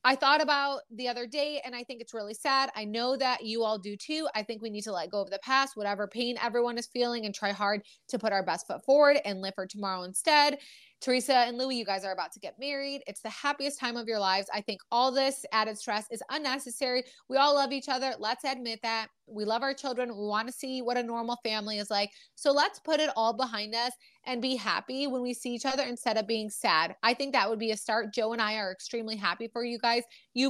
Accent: American